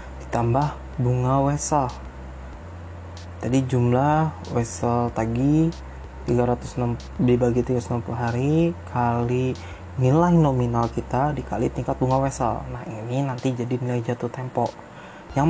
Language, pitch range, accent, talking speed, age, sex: Indonesian, 90-130 Hz, native, 105 wpm, 20-39, male